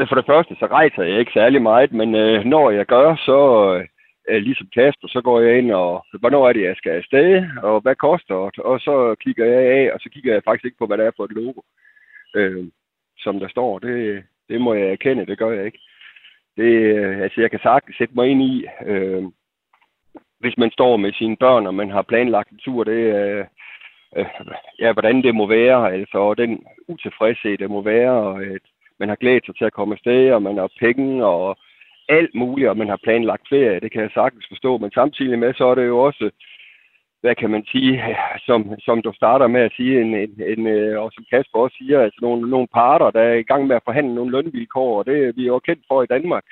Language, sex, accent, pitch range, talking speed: Danish, male, native, 105-130 Hz, 230 wpm